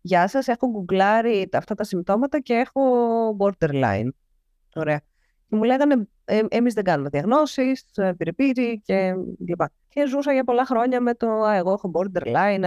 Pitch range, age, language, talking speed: 155-190 Hz, 20-39, Greek, 150 wpm